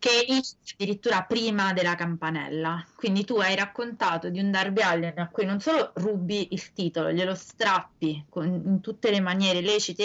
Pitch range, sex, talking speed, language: 170-215 Hz, female, 175 wpm, Italian